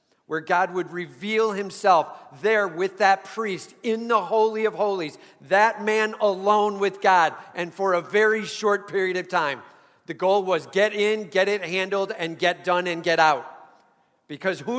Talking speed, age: 175 wpm, 40-59